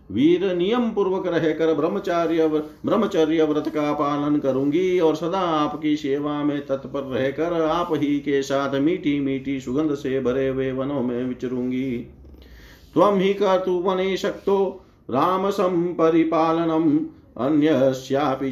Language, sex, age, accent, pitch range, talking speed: Hindi, male, 50-69, native, 125-165 Hz, 105 wpm